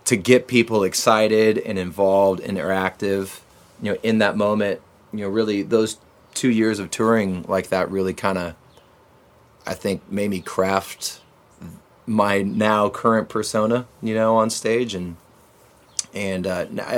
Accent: American